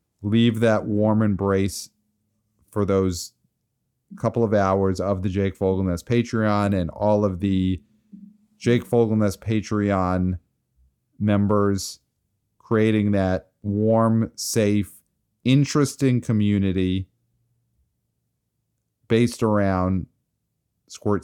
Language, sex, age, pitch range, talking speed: English, male, 40-59, 95-120 Hz, 90 wpm